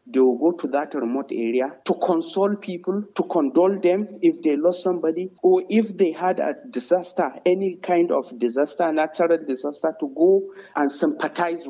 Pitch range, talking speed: 150-230 Hz, 170 wpm